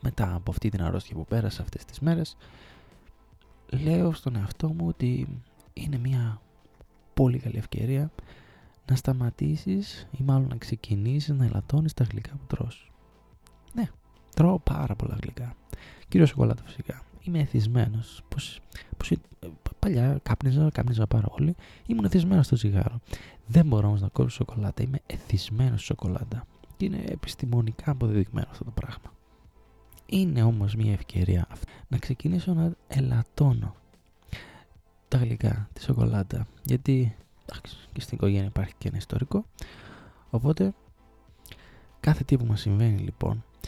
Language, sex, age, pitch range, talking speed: Greek, male, 20-39, 105-135 Hz, 135 wpm